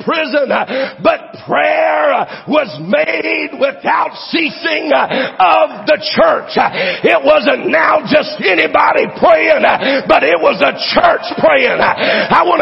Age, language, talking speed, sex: 50-69, English, 115 wpm, male